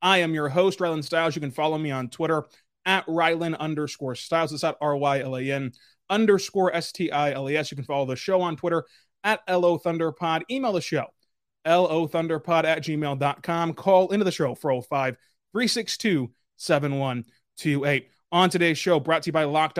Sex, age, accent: male, 20-39, American